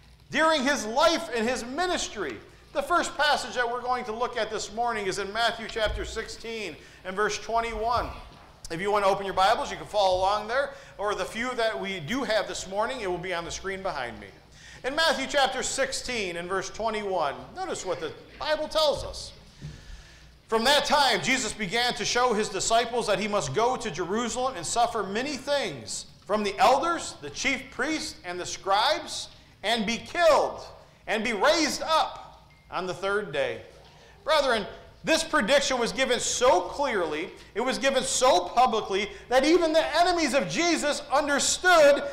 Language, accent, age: English, American, 40-59